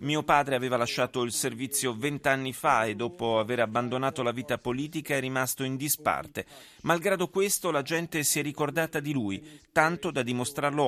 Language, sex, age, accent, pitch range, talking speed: Italian, male, 30-49, native, 110-135 Hz, 170 wpm